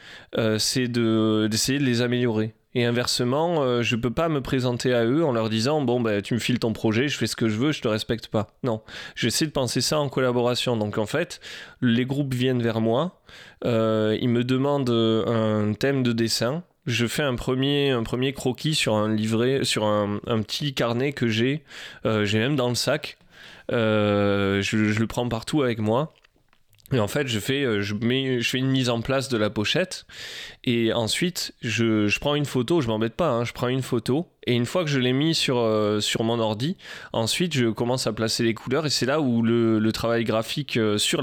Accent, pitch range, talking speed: French, 110-135 Hz, 225 wpm